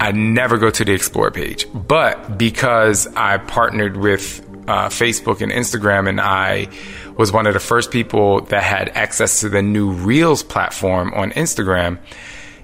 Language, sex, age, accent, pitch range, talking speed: English, male, 20-39, American, 95-115 Hz, 160 wpm